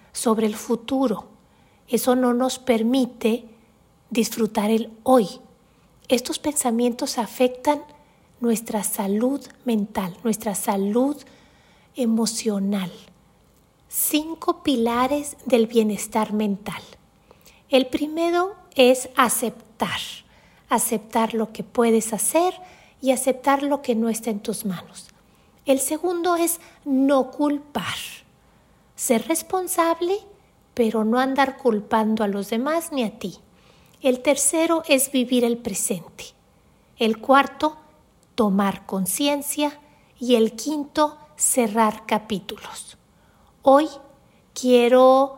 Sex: female